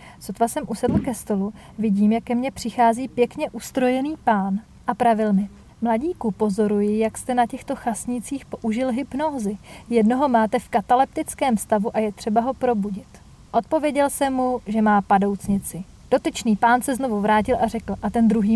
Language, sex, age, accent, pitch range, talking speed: Czech, female, 40-59, native, 220-260 Hz, 165 wpm